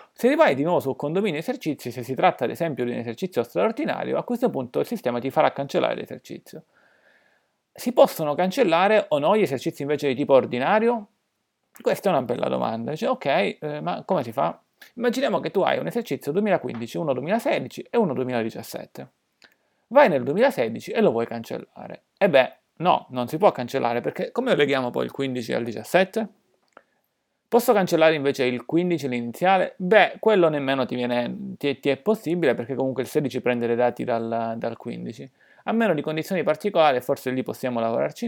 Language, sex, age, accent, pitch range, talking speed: Italian, male, 40-59, native, 125-205 Hz, 185 wpm